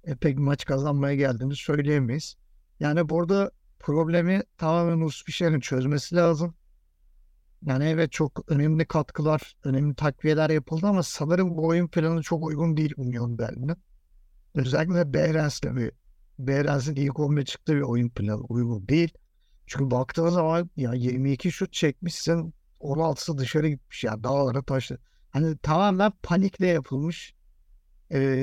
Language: Turkish